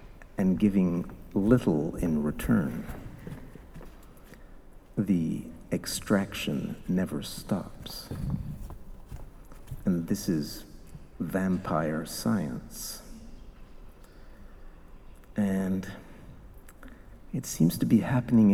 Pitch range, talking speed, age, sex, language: 85-110 Hz, 65 wpm, 50-69, male, English